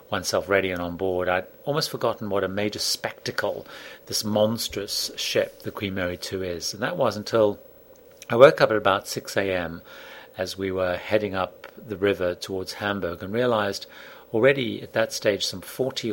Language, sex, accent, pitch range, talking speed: English, male, British, 90-110 Hz, 180 wpm